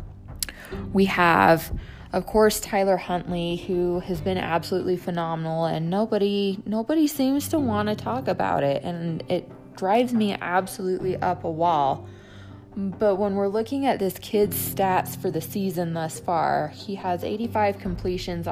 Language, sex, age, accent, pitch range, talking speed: English, female, 20-39, American, 155-200 Hz, 150 wpm